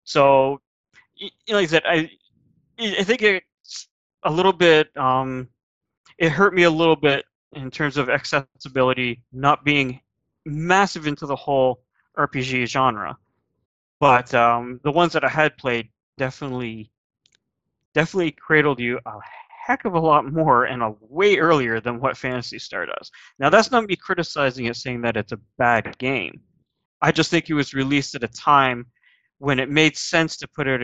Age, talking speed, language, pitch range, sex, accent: 20-39, 165 wpm, English, 120-155 Hz, male, American